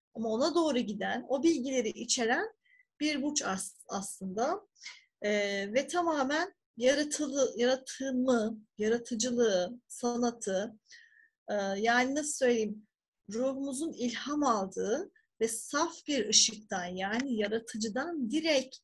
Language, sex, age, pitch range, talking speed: Turkish, female, 40-59, 220-290 Hz, 100 wpm